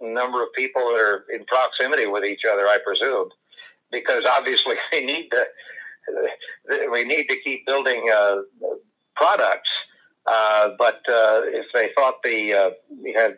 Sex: male